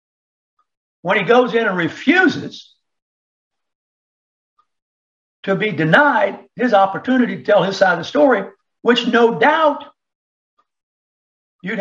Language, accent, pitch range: English, American, 200-300 Hz